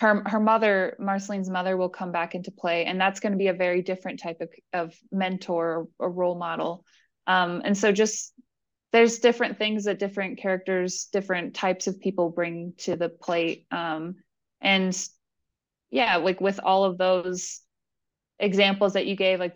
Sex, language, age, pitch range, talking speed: female, English, 20-39, 180-205 Hz, 170 wpm